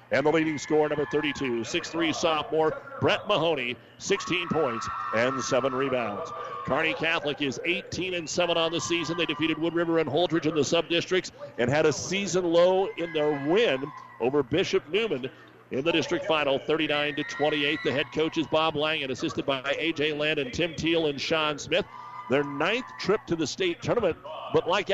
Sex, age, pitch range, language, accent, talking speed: male, 50-69, 145-185 Hz, English, American, 185 wpm